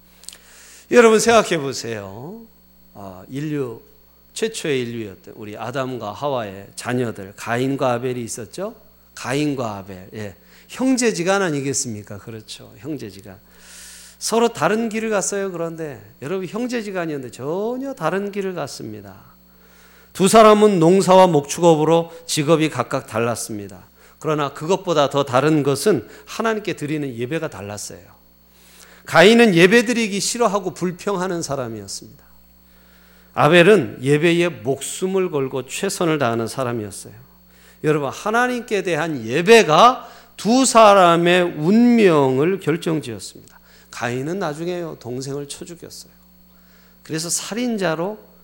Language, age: Korean, 40-59